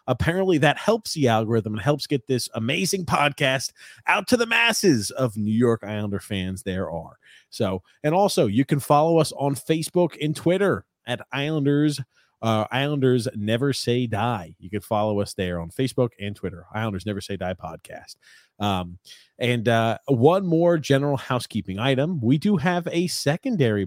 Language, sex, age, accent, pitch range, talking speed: English, male, 30-49, American, 105-150 Hz, 170 wpm